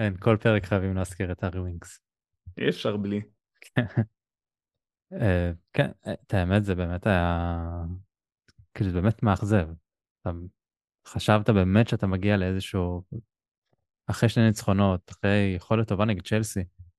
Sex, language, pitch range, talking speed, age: male, Hebrew, 90-110 Hz, 100 wpm, 20-39